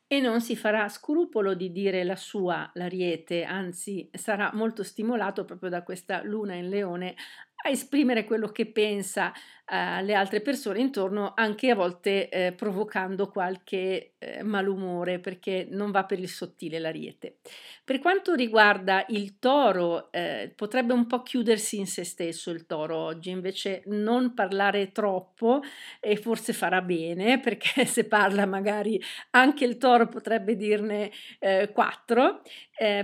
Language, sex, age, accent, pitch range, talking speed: Italian, female, 50-69, native, 185-235 Hz, 145 wpm